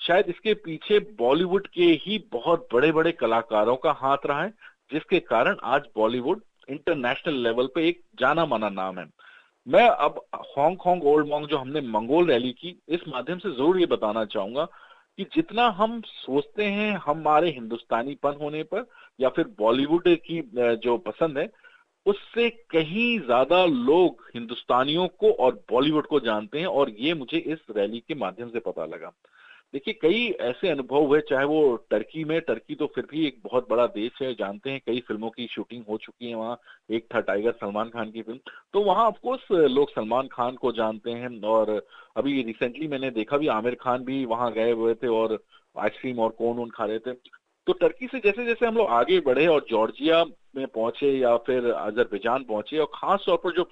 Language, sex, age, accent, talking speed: Hindi, male, 40-59, native, 185 wpm